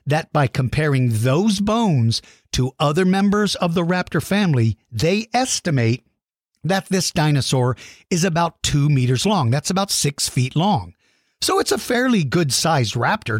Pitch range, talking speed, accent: 130-190 Hz, 150 wpm, American